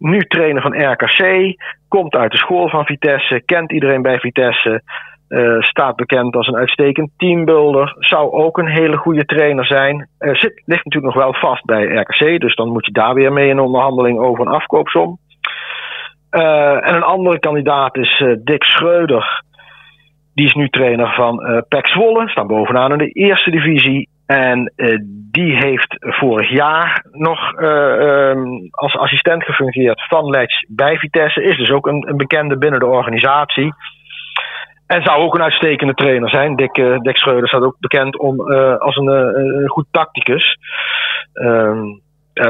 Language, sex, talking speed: Dutch, male, 170 wpm